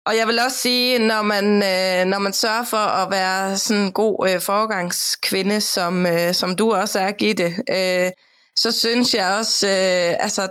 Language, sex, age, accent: Danish, female, 20-39, native